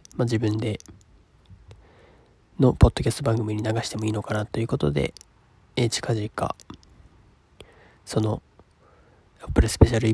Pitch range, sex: 105-120 Hz, male